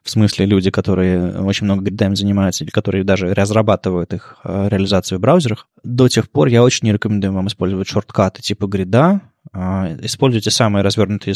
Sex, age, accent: male, 20-39, native